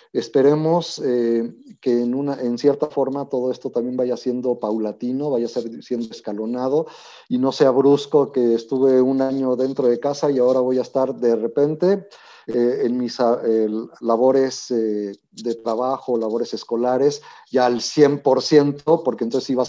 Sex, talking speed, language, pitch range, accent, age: male, 155 wpm, Spanish, 115-135 Hz, Mexican, 40-59